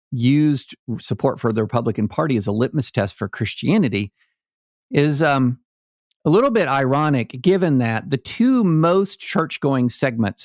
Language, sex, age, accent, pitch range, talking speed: English, male, 50-69, American, 120-160 Hz, 145 wpm